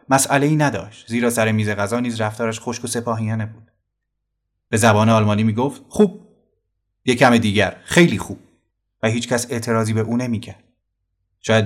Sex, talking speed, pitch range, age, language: male, 145 wpm, 110-135 Hz, 30-49, Persian